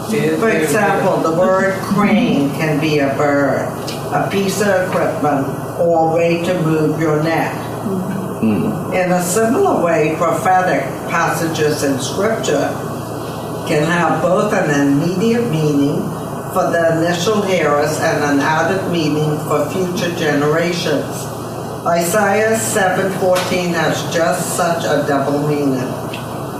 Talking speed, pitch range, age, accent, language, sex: 120 wpm, 145-185 Hz, 60-79, American, English, female